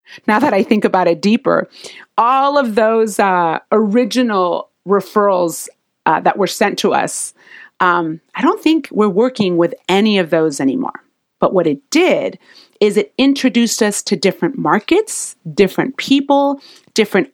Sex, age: female, 30-49